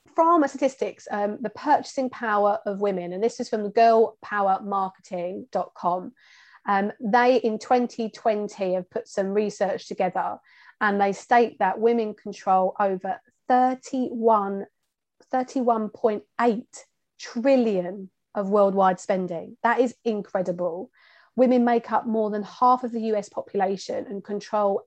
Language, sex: English, female